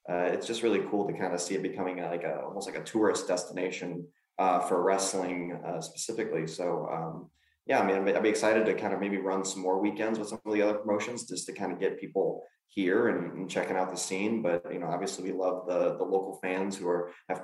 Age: 20-39